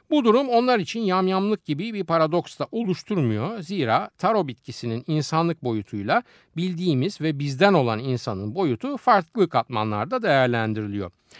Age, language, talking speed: 60-79, Turkish, 125 wpm